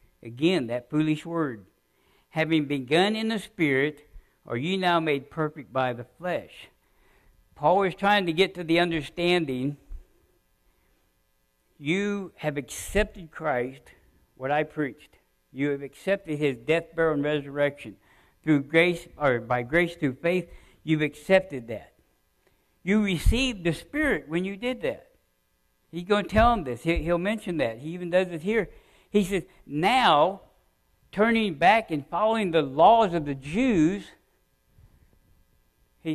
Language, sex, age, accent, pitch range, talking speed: English, male, 60-79, American, 135-190 Hz, 140 wpm